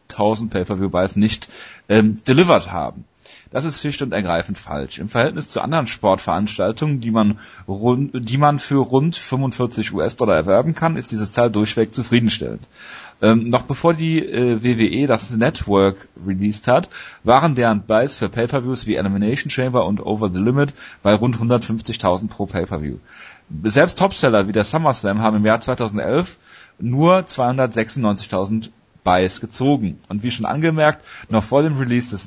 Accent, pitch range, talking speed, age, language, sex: German, 100-130 Hz, 155 wpm, 30-49, German, male